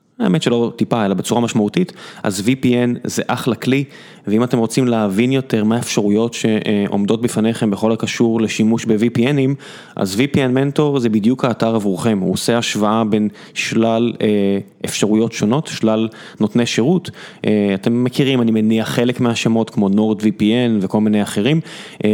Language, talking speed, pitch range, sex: Hebrew, 145 wpm, 110-135 Hz, male